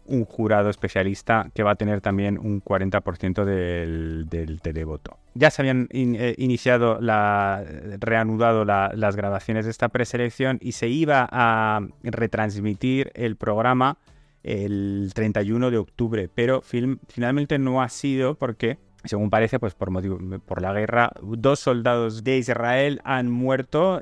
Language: Spanish